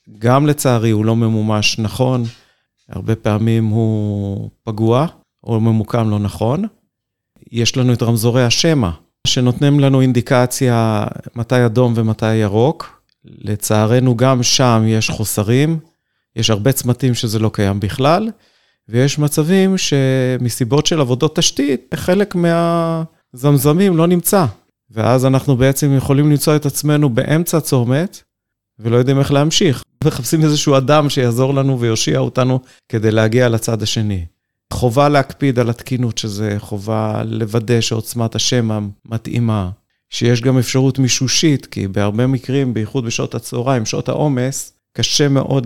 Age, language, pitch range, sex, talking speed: 40-59, Hebrew, 110-140 Hz, male, 125 wpm